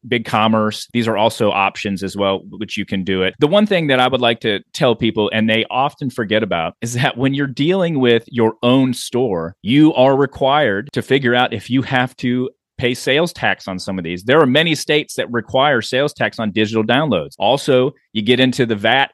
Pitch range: 110-135 Hz